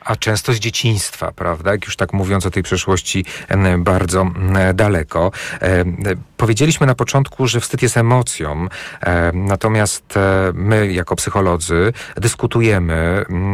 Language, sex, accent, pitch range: Polish, male, native, 95-125 Hz